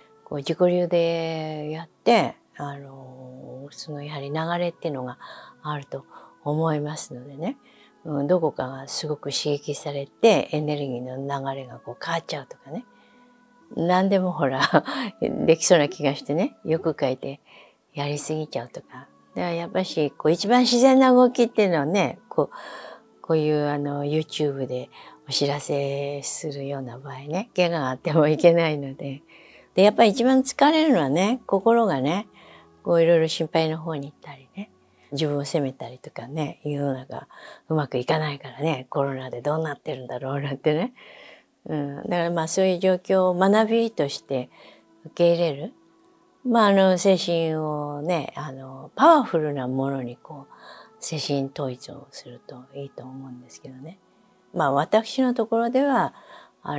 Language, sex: Japanese, female